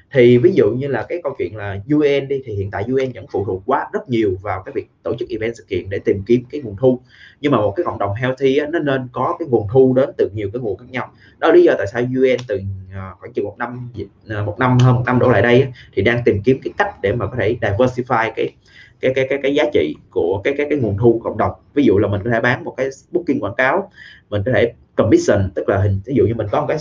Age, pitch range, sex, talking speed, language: 20-39, 105-140 Hz, male, 290 wpm, Vietnamese